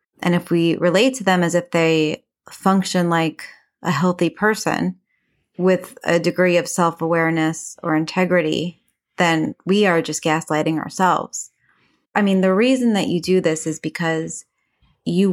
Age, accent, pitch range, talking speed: 30-49, American, 170-200 Hz, 150 wpm